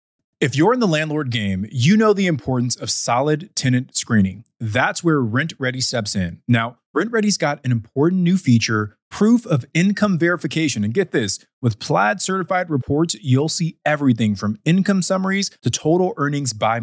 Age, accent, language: 20-39, American, English